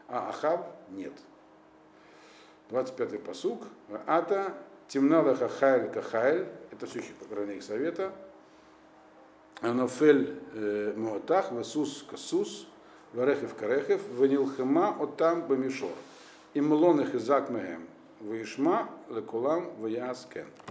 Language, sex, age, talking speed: Russian, male, 50-69, 30 wpm